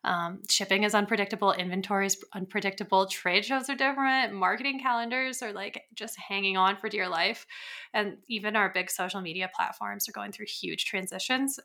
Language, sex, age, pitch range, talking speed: English, female, 20-39, 185-230 Hz, 170 wpm